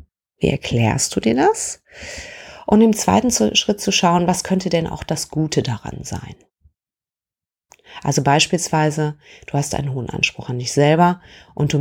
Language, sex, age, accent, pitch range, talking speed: German, female, 30-49, German, 130-170 Hz, 165 wpm